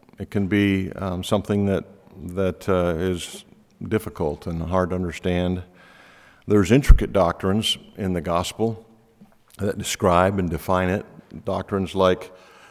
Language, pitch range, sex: English, 90-110 Hz, male